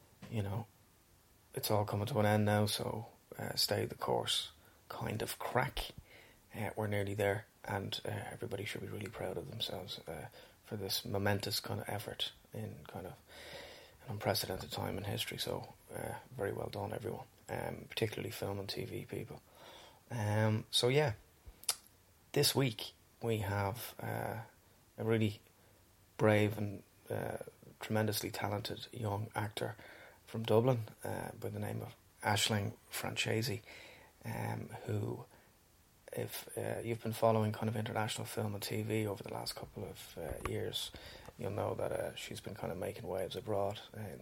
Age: 20-39